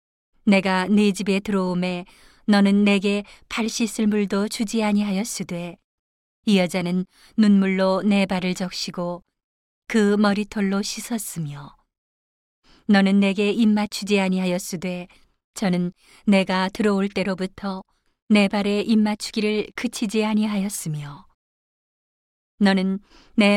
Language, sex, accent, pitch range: Korean, female, native, 180-210 Hz